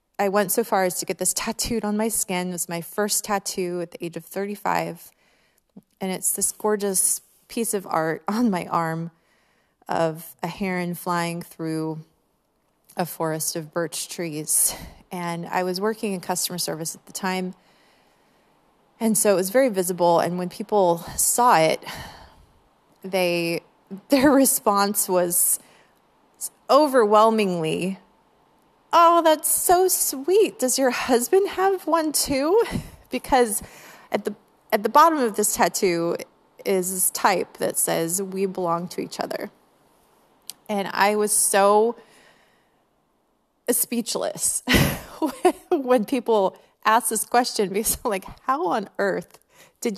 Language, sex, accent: English, female, American